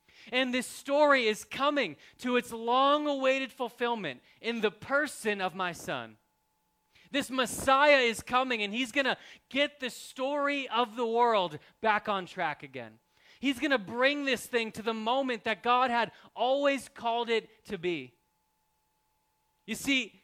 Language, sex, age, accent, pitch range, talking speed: English, male, 30-49, American, 200-265 Hz, 155 wpm